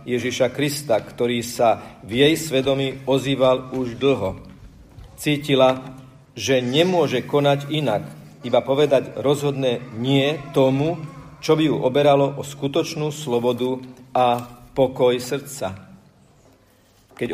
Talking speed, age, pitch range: 105 wpm, 40-59, 115-140 Hz